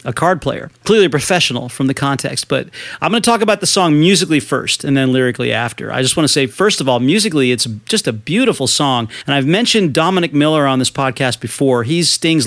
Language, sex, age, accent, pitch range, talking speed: English, male, 40-59, American, 130-165 Hz, 230 wpm